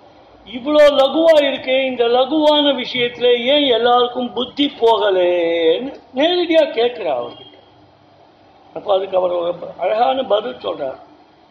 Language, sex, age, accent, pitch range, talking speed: Tamil, male, 60-79, native, 220-300 Hz, 100 wpm